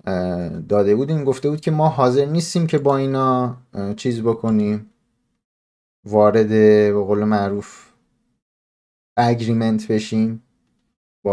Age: 30-49